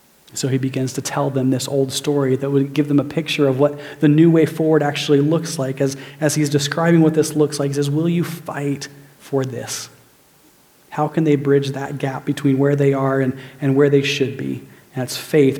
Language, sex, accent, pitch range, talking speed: English, male, American, 140-155 Hz, 225 wpm